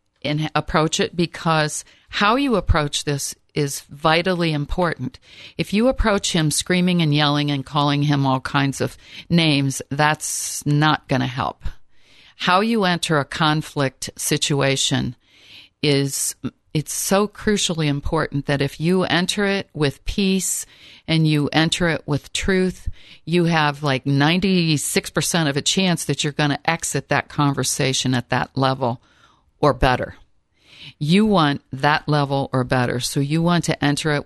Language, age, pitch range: English, 50-69, 135-175 Hz